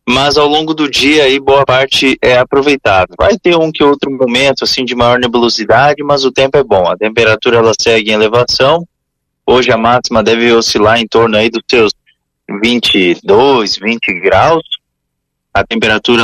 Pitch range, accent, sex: 115-145 Hz, Brazilian, male